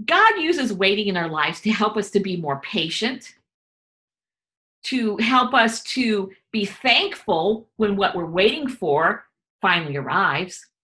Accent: American